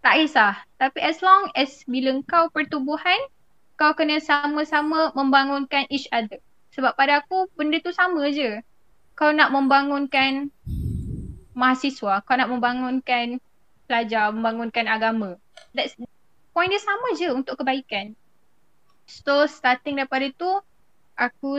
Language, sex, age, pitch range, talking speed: Malay, female, 10-29, 235-290 Hz, 120 wpm